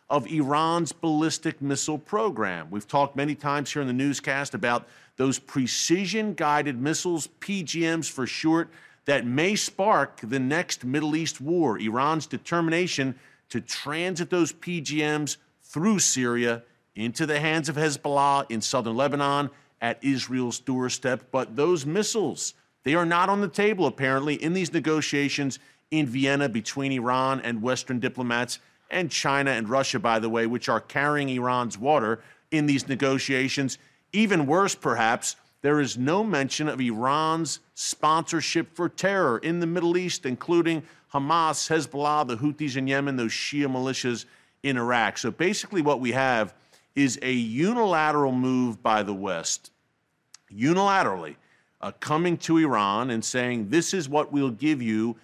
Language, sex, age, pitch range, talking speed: English, male, 40-59, 125-160 Hz, 145 wpm